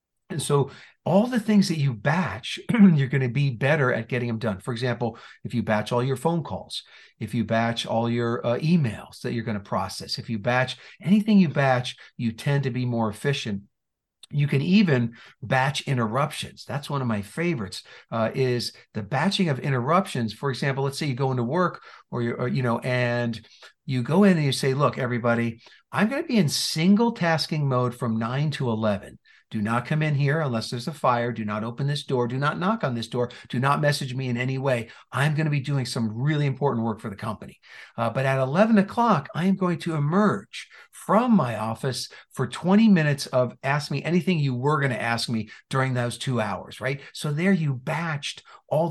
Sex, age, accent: male, 50-69, American